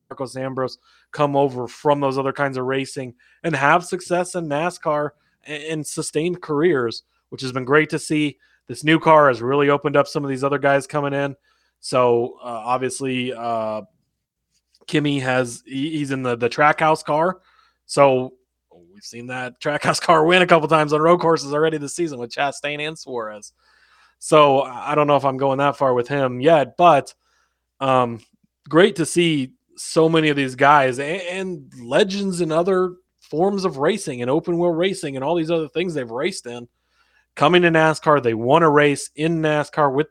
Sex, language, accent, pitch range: male, English, American, 130-160 Hz